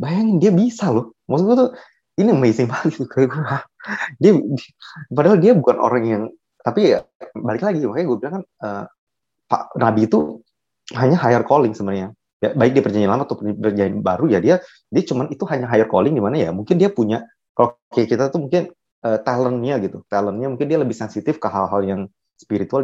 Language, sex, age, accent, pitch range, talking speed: Indonesian, male, 20-39, native, 110-160 Hz, 185 wpm